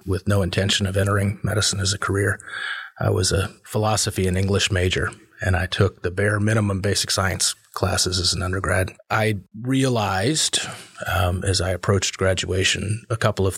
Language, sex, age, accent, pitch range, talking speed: English, male, 30-49, American, 95-110 Hz, 170 wpm